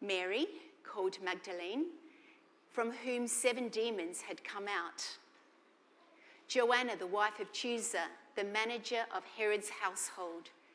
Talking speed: 110 wpm